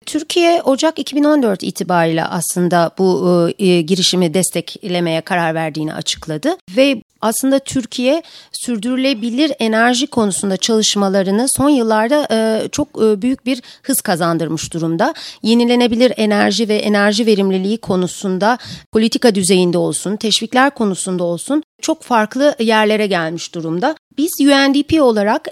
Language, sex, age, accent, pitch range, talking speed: Turkish, female, 40-59, native, 185-265 Hz, 115 wpm